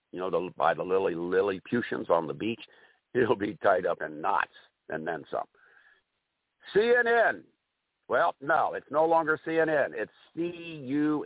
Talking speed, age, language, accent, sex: 155 wpm, 60-79, English, American, male